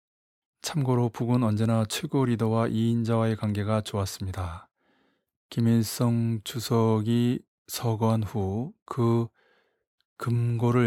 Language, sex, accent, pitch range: Korean, male, native, 105-125 Hz